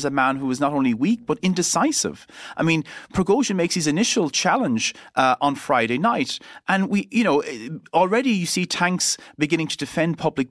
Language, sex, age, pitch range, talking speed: English, male, 40-59, 125-185 Hz, 185 wpm